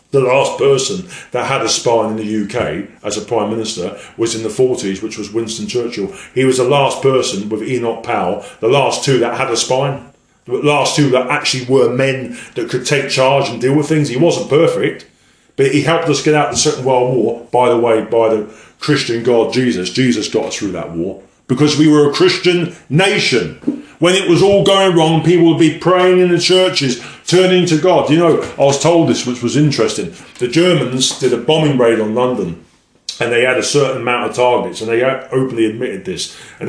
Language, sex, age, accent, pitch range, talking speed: English, male, 40-59, British, 120-165 Hz, 220 wpm